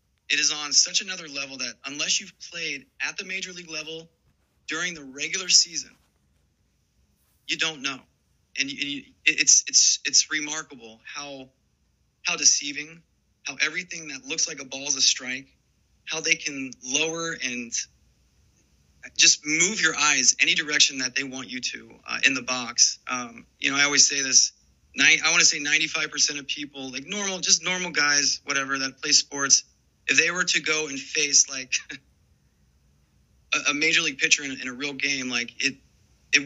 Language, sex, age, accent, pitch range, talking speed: English, male, 30-49, American, 130-160 Hz, 175 wpm